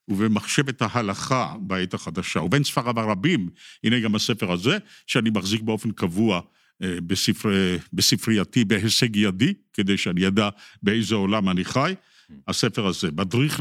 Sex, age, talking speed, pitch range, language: male, 50-69, 130 wpm, 100-140 Hz, Hebrew